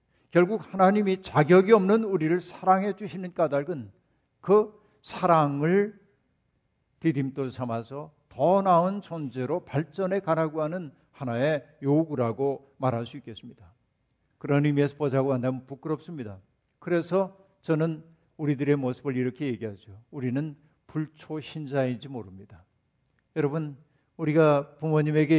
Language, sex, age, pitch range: Korean, male, 50-69, 135-170 Hz